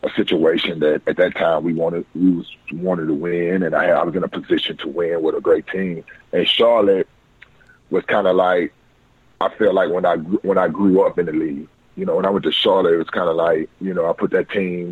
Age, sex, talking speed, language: 30-49, male, 255 wpm, English